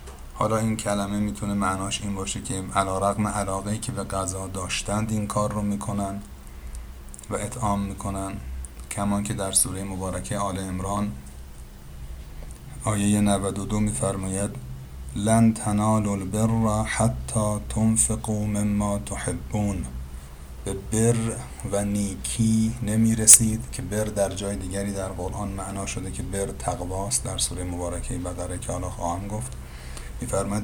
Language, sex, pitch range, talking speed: Persian, male, 90-105 Hz, 130 wpm